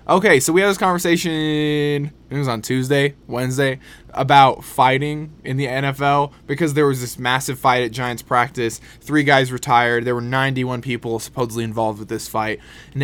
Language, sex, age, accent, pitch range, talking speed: English, male, 20-39, American, 125-150 Hz, 175 wpm